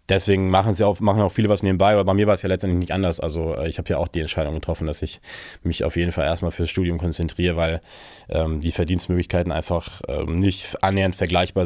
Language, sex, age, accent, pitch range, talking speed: German, male, 20-39, German, 80-95 Hz, 225 wpm